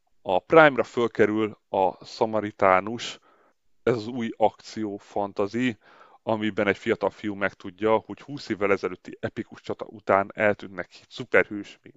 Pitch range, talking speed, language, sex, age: 95-115 Hz, 125 wpm, Hungarian, male, 30-49